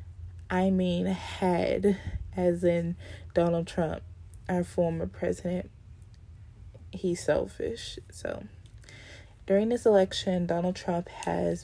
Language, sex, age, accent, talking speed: English, female, 20-39, American, 100 wpm